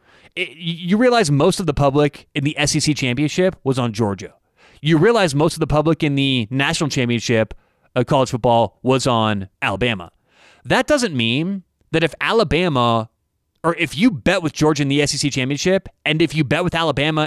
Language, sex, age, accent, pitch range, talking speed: English, male, 30-49, American, 125-165 Hz, 175 wpm